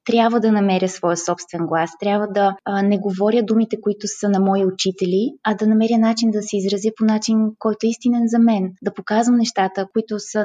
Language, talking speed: Bulgarian, 205 wpm